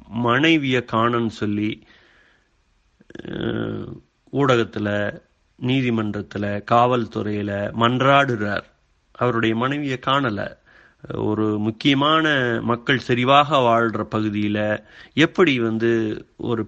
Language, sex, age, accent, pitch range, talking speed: Tamil, male, 30-49, native, 105-125 Hz, 70 wpm